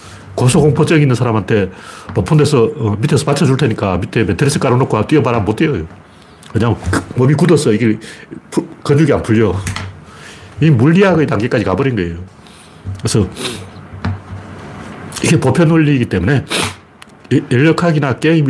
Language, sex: Korean, male